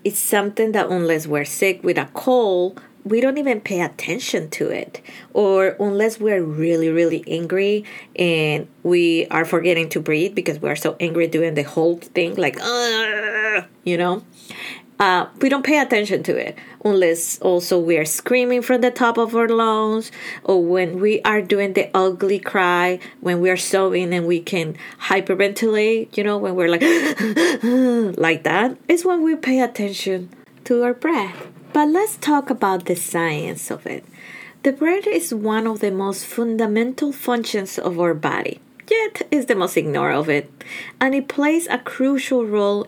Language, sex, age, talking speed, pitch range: English, female, 20-39, 170 wpm, 180-245 Hz